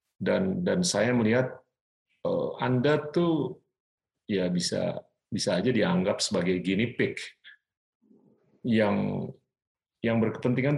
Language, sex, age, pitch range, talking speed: Indonesian, male, 40-59, 110-155 Hz, 95 wpm